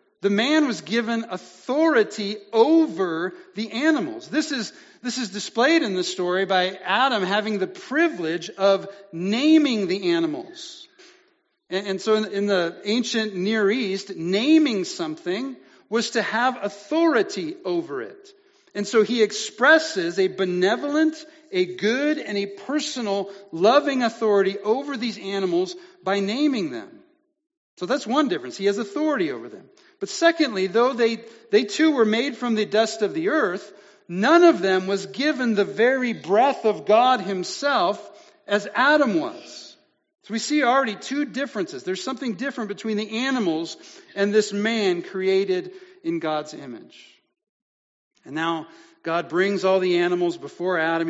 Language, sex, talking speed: English, male, 145 wpm